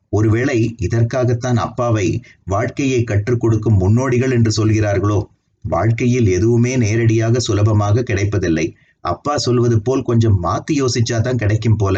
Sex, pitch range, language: male, 105-120 Hz, Tamil